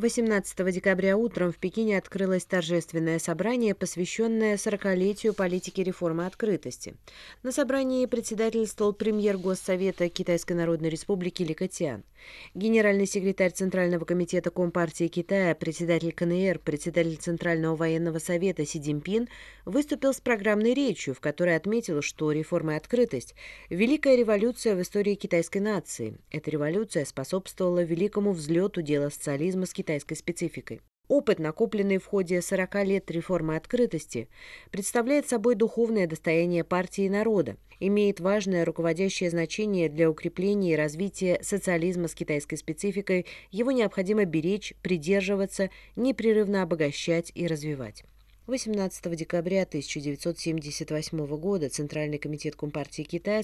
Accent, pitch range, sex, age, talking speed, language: native, 165-205 Hz, female, 20-39, 120 wpm, Russian